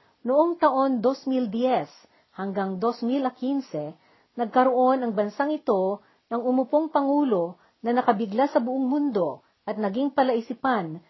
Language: Filipino